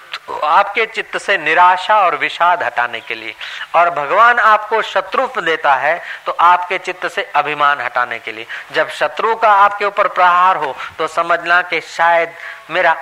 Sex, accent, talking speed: male, native, 165 wpm